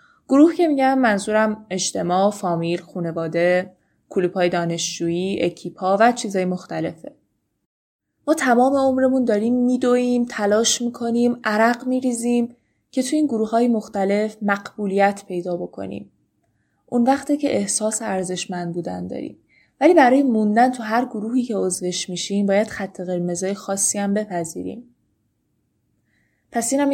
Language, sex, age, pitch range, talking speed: Persian, female, 20-39, 180-240 Hz, 120 wpm